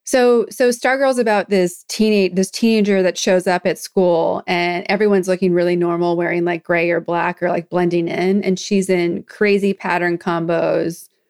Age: 30-49